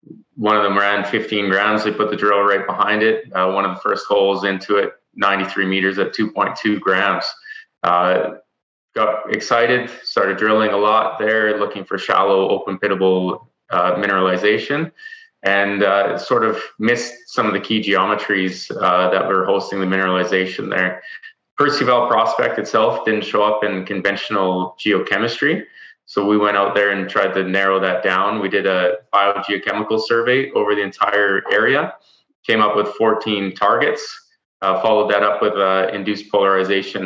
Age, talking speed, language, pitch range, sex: 20-39, 165 wpm, English, 95-105 Hz, male